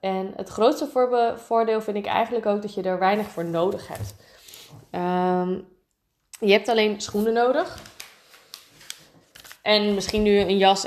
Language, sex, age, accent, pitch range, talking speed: Dutch, female, 20-39, Dutch, 200-255 Hz, 145 wpm